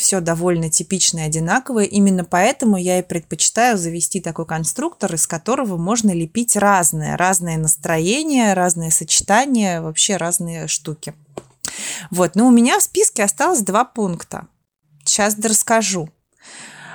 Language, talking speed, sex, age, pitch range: Russian, 125 wpm, female, 20-39, 170-215 Hz